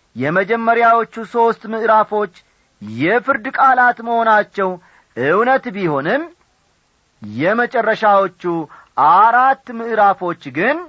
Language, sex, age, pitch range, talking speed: Amharic, male, 40-59, 150-225 Hz, 65 wpm